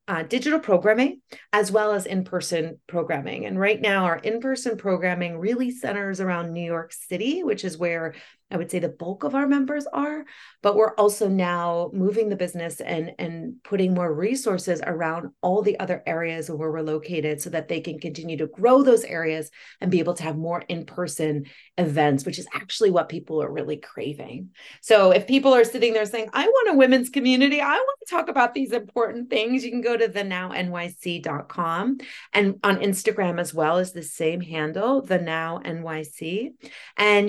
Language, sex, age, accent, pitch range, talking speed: English, female, 30-49, American, 170-235 Hz, 180 wpm